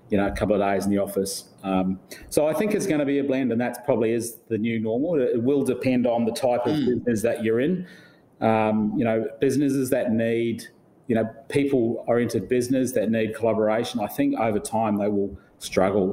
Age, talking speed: 30-49, 215 wpm